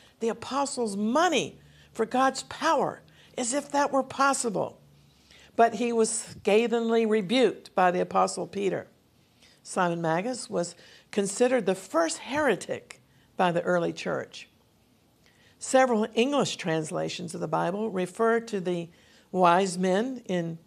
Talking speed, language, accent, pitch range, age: 125 wpm, English, American, 180-240 Hz, 50-69